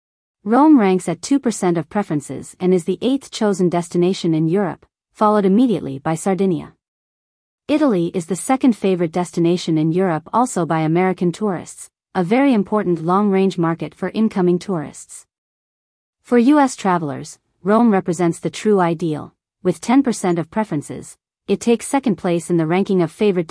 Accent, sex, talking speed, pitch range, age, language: American, female, 150 wpm, 170-210 Hz, 40-59, English